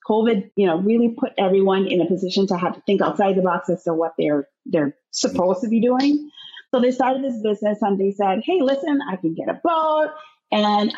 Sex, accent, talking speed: female, American, 225 wpm